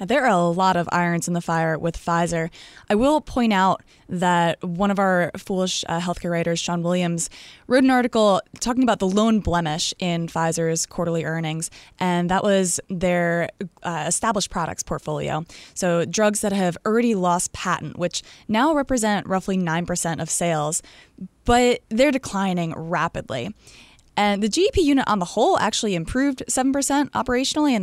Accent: American